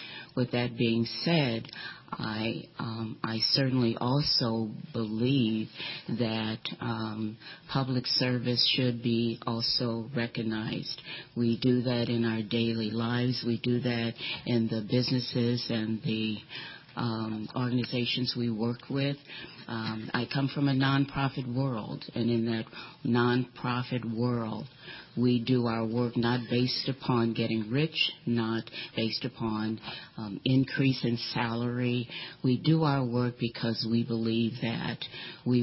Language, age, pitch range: English, 50-69, 115-130 Hz